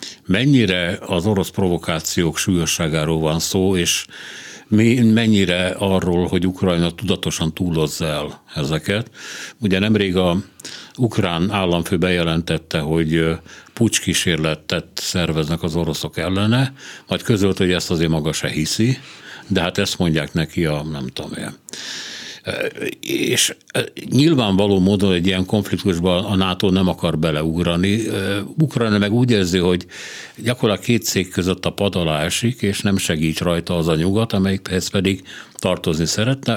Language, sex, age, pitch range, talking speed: Hungarian, male, 60-79, 85-105 Hz, 130 wpm